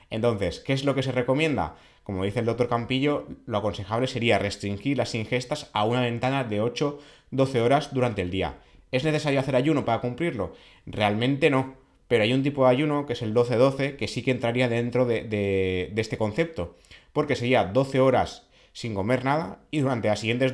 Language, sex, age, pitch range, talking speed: Spanish, male, 30-49, 100-130 Hz, 195 wpm